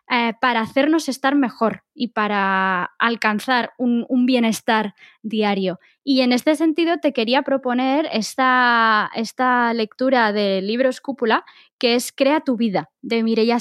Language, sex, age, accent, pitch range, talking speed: Spanish, female, 20-39, Spanish, 225-285 Hz, 140 wpm